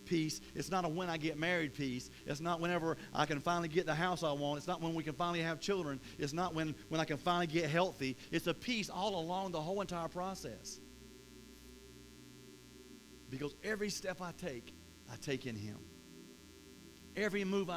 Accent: American